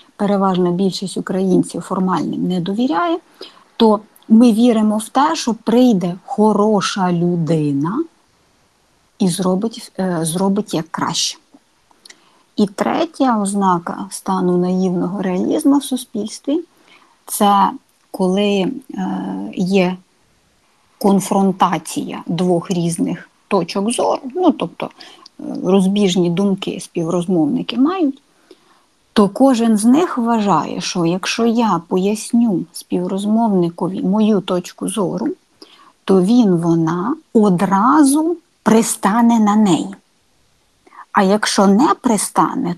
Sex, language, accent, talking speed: female, Ukrainian, native, 95 wpm